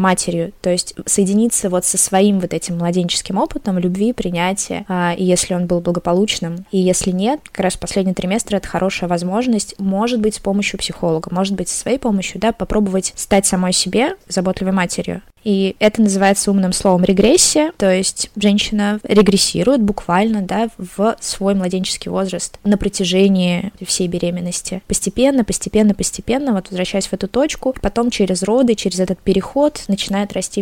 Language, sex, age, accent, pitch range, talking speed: Russian, female, 20-39, native, 185-215 Hz, 155 wpm